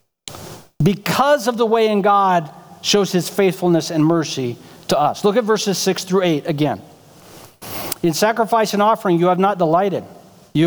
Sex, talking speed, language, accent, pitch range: male, 165 wpm, English, American, 170-225 Hz